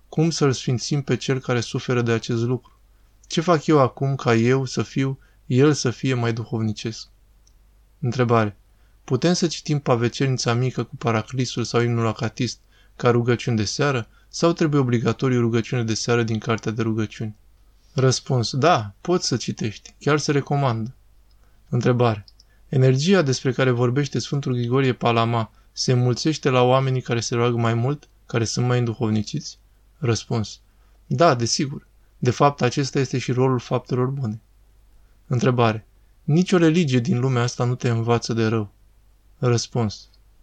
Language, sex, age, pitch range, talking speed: Romanian, male, 20-39, 115-135 Hz, 150 wpm